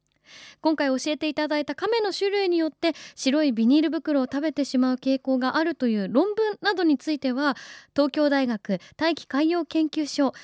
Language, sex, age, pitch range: Japanese, female, 20-39, 235-310 Hz